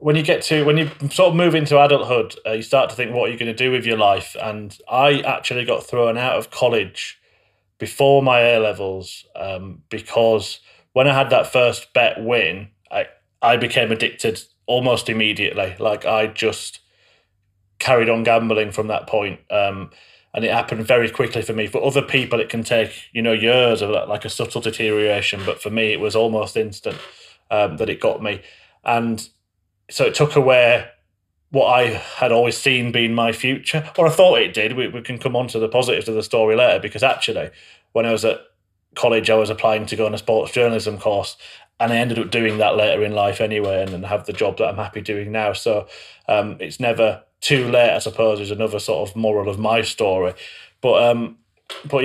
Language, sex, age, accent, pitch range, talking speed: English, male, 30-49, British, 110-130 Hz, 210 wpm